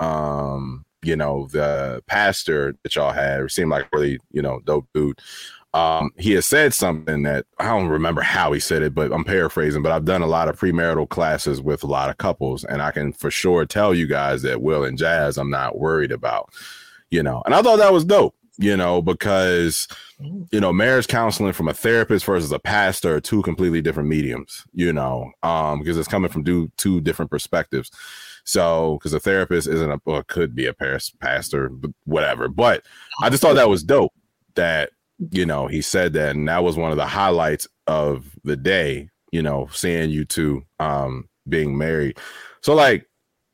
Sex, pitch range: male, 75-90 Hz